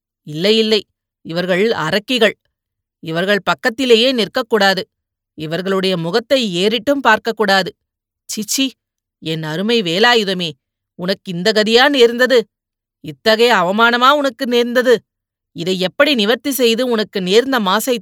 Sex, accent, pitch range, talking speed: female, native, 190-235 Hz, 105 wpm